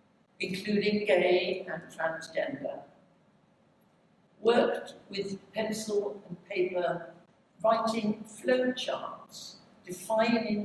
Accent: British